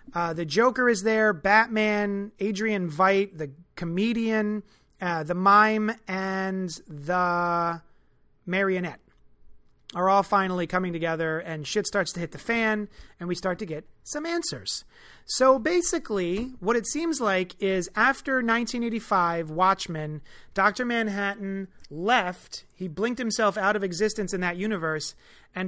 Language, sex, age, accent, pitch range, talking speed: English, male, 30-49, American, 175-215 Hz, 135 wpm